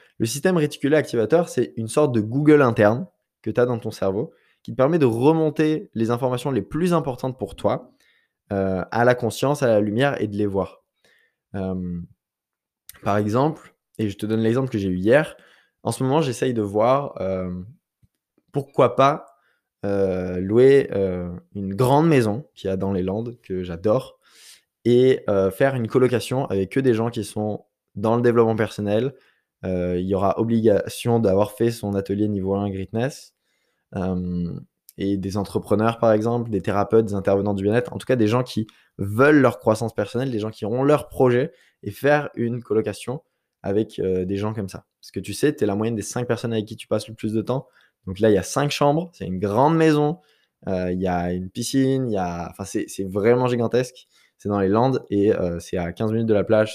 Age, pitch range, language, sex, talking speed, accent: 20-39, 100-125 Hz, French, male, 210 wpm, French